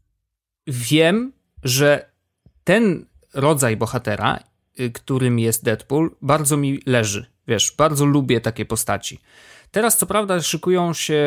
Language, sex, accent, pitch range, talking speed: Polish, male, native, 120-145 Hz, 110 wpm